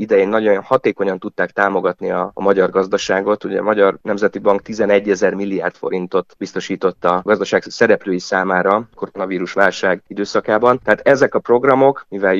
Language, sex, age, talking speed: Hungarian, male, 30-49, 150 wpm